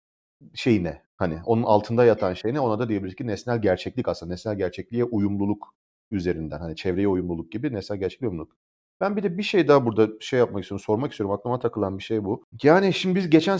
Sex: male